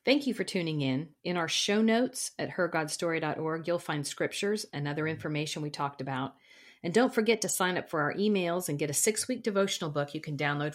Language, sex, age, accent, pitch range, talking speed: English, female, 50-69, American, 145-195 Hz, 210 wpm